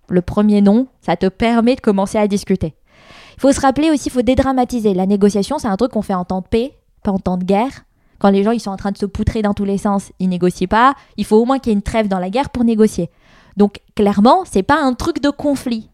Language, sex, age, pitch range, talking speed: French, female, 20-39, 180-220 Hz, 275 wpm